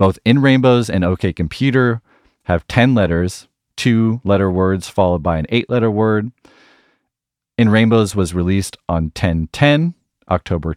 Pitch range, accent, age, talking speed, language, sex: 85-110 Hz, American, 30-49, 140 wpm, English, male